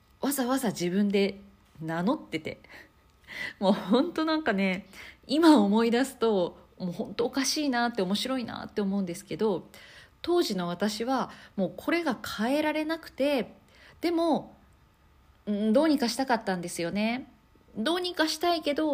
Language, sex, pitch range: Japanese, female, 175-270 Hz